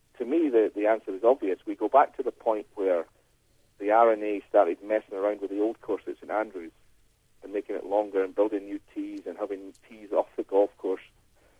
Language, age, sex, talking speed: English, 40-59, male, 205 wpm